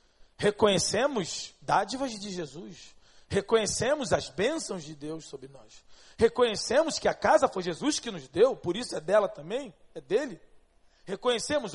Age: 40-59